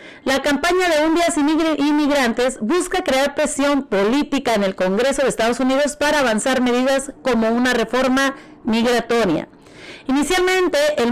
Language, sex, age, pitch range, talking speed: Spanish, female, 30-49, 235-300 Hz, 135 wpm